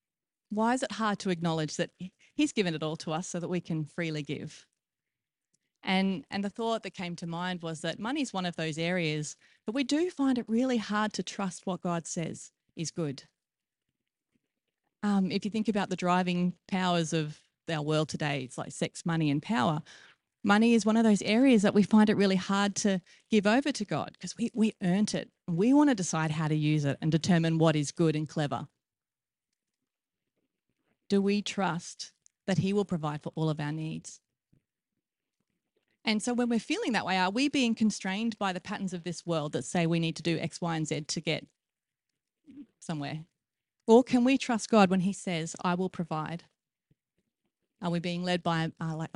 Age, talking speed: 30-49, 200 wpm